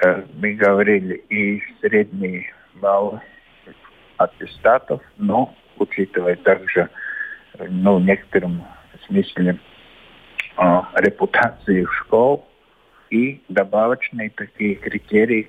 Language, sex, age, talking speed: Russian, male, 50-69, 75 wpm